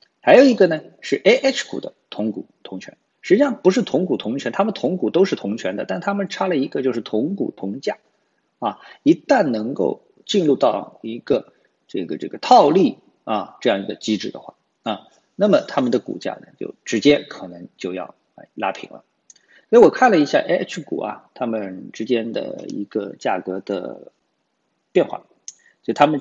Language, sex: Chinese, male